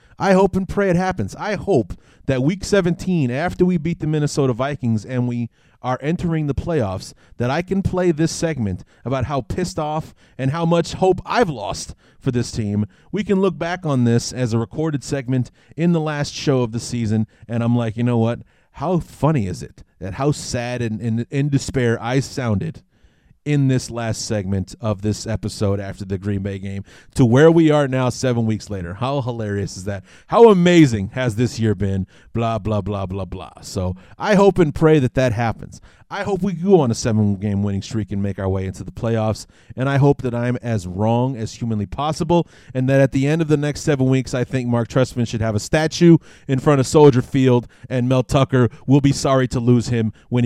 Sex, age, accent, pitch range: male, 30-49, American, 110-145 Hz